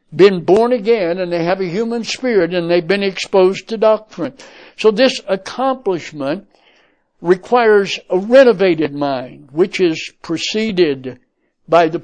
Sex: male